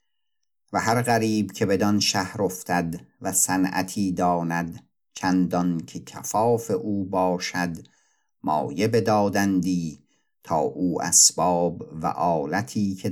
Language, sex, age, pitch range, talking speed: Persian, male, 50-69, 85-100 Hz, 105 wpm